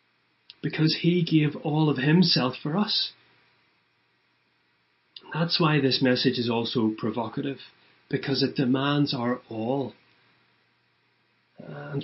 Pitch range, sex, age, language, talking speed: 115-145 Hz, male, 30-49, English, 105 wpm